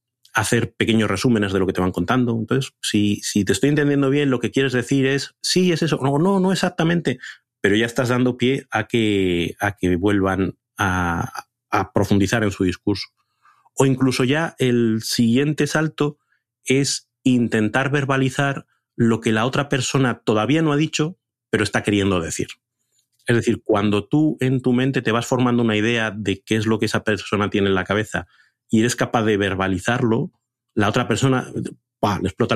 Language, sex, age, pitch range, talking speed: Spanish, male, 30-49, 105-130 Hz, 180 wpm